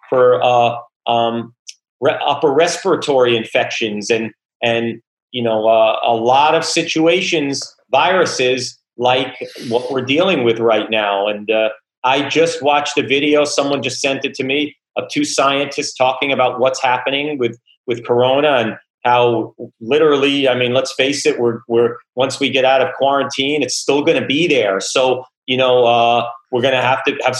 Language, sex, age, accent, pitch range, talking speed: English, male, 40-59, American, 120-145 Hz, 170 wpm